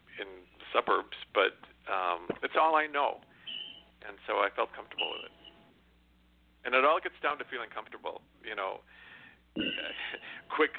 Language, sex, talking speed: English, male, 150 wpm